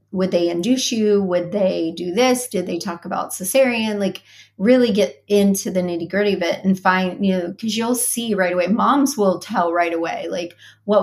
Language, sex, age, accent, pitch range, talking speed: English, female, 30-49, American, 180-225 Hz, 205 wpm